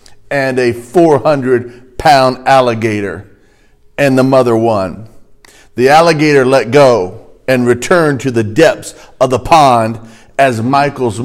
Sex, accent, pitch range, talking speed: male, American, 120-150 Hz, 115 wpm